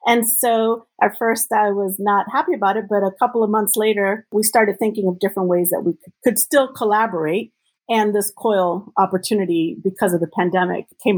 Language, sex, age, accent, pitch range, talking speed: English, female, 40-59, American, 185-235 Hz, 195 wpm